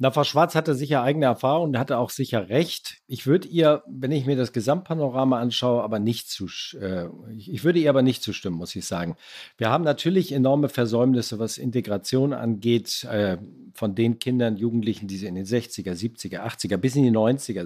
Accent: German